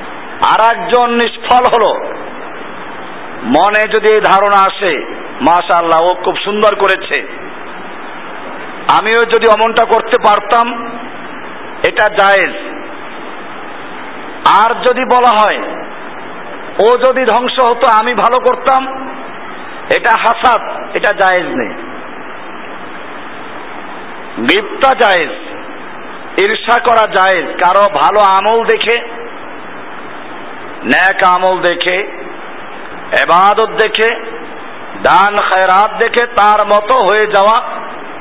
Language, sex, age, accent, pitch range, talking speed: Bengali, male, 50-69, native, 195-240 Hz, 45 wpm